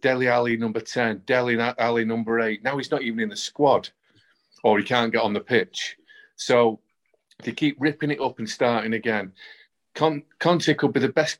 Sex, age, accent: male, 40-59, British